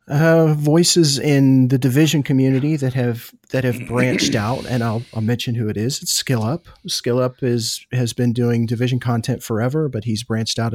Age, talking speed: 40-59, 195 wpm